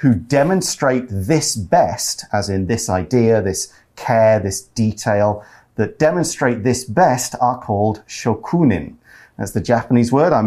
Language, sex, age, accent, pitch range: Chinese, male, 40-59, British, 110-140 Hz